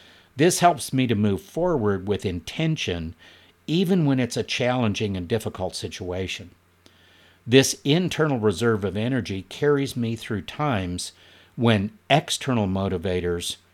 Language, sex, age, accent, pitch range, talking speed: English, male, 50-69, American, 90-120 Hz, 120 wpm